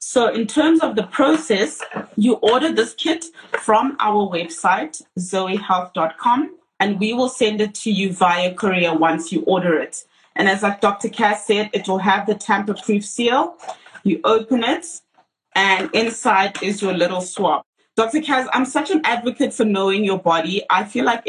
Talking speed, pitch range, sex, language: 170 wpm, 180-235 Hz, female, English